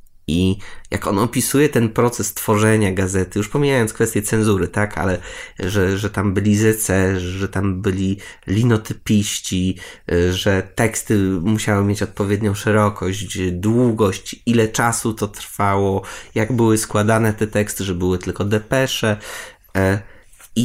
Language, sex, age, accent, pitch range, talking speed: Polish, male, 20-39, native, 95-115 Hz, 130 wpm